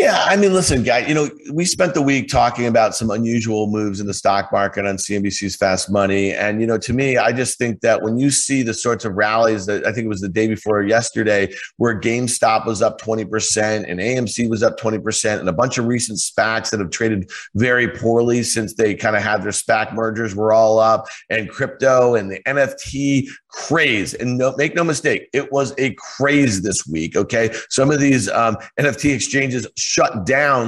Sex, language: male, English